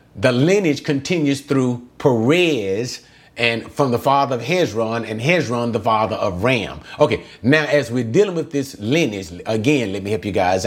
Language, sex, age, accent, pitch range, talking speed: English, male, 30-49, American, 120-155 Hz, 175 wpm